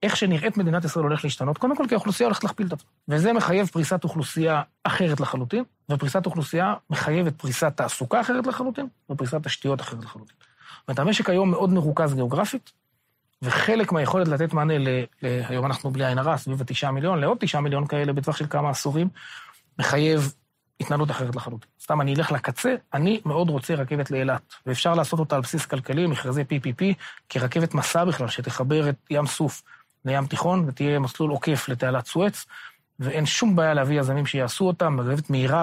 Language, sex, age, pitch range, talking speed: Hebrew, male, 30-49, 135-165 Hz, 135 wpm